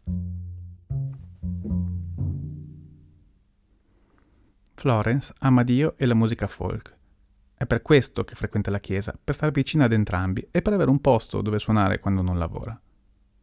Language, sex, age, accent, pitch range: Italian, male, 30-49, native, 95-125 Hz